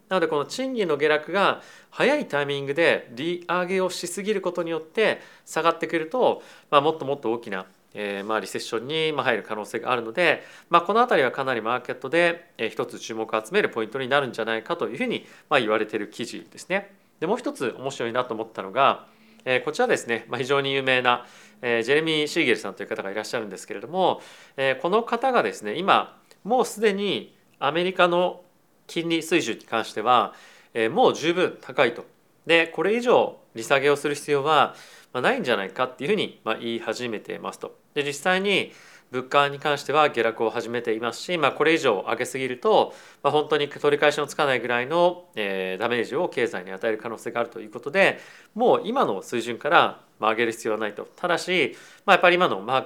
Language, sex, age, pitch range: Japanese, male, 40-59, 120-175 Hz